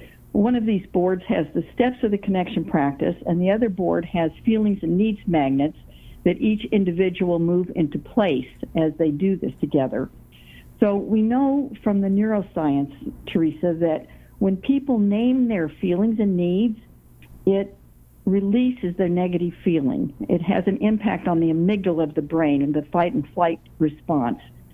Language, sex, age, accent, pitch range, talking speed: English, female, 60-79, American, 160-215 Hz, 165 wpm